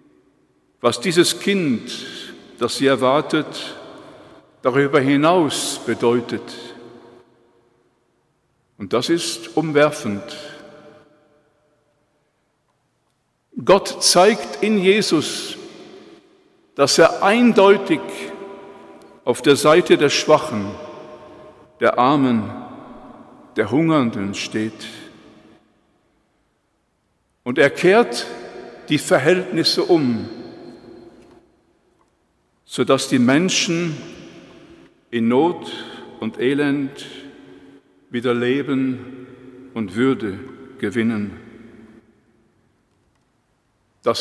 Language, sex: German, male